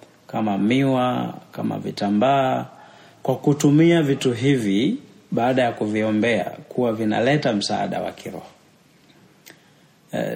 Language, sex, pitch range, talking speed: Swahili, male, 115-145 Hz, 100 wpm